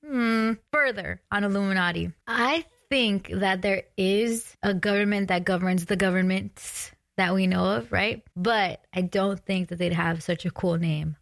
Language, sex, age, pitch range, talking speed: English, female, 20-39, 175-205 Hz, 165 wpm